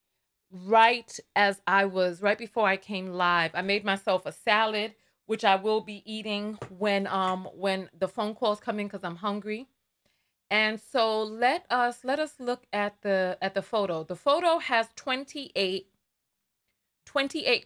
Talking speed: 160 wpm